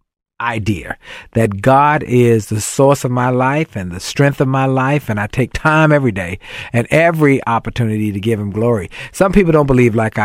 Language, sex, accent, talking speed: English, male, American, 195 wpm